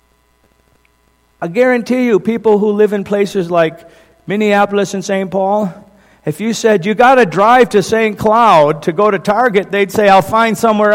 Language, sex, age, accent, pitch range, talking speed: English, male, 50-69, American, 160-210 Hz, 170 wpm